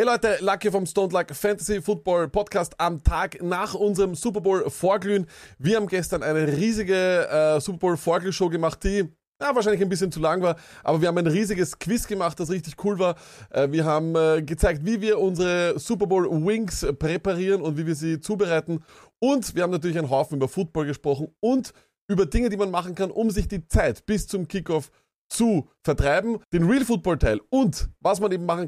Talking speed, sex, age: 195 wpm, male, 20-39